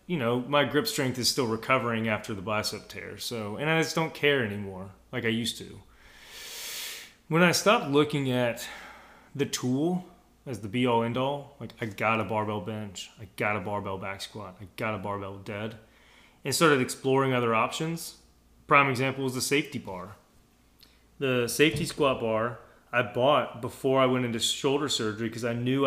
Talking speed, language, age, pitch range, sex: 180 wpm, English, 30-49, 110-140 Hz, male